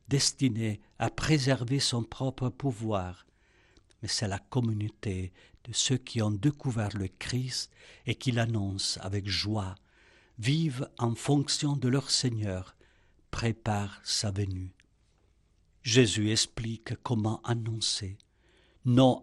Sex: male